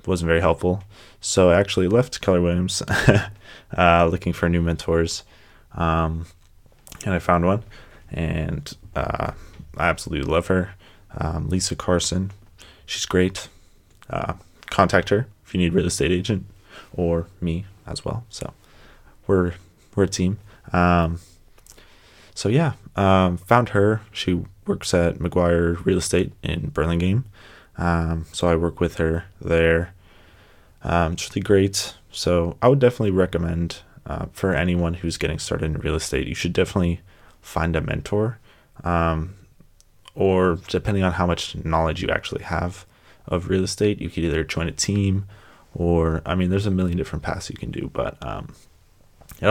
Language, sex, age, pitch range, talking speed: English, male, 20-39, 85-100 Hz, 155 wpm